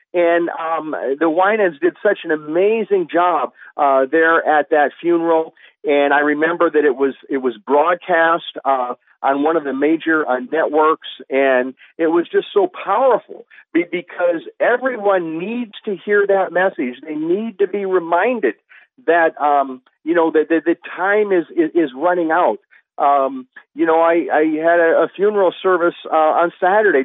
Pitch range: 155-200 Hz